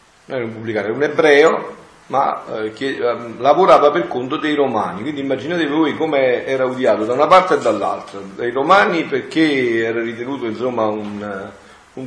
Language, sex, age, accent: Italian, male, 50-69, native